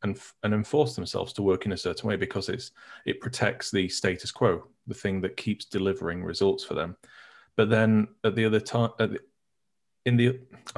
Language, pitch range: English, 95-115 Hz